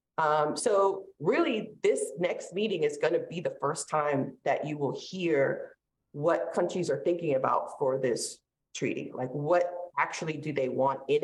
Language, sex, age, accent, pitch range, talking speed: English, female, 30-49, American, 150-205 Hz, 170 wpm